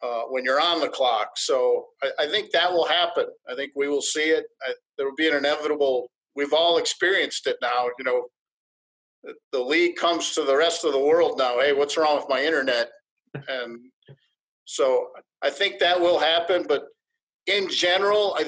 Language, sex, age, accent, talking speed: English, male, 50-69, American, 195 wpm